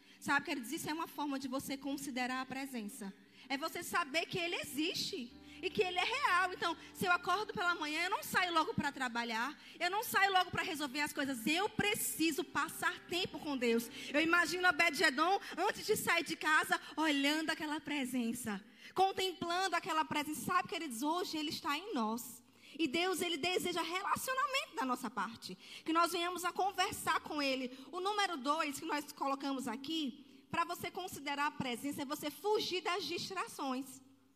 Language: Portuguese